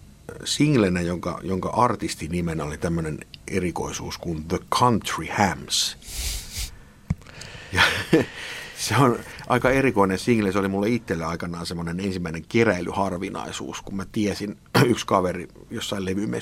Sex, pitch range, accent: male, 85-105 Hz, native